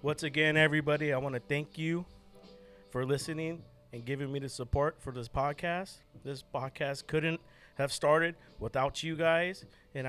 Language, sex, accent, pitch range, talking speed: English, male, American, 115-140 Hz, 160 wpm